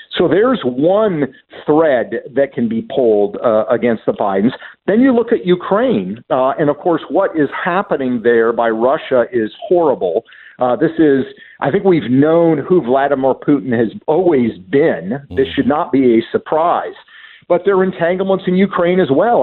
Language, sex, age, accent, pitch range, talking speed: English, male, 50-69, American, 130-190 Hz, 175 wpm